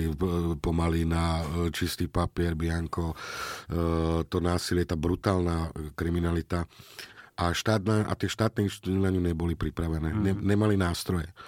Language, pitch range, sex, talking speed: Slovak, 80-95 Hz, male, 105 wpm